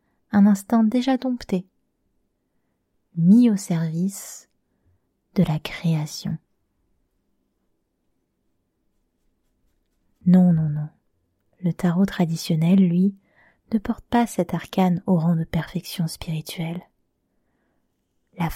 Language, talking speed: French, 90 wpm